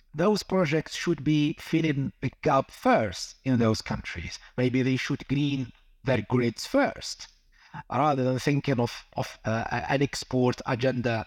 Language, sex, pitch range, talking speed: English, male, 120-175 Hz, 145 wpm